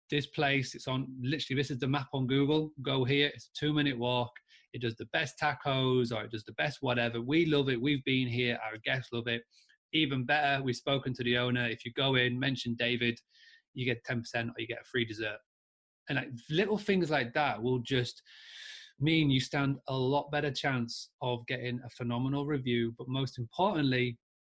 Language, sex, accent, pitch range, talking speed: English, male, British, 120-145 Hz, 205 wpm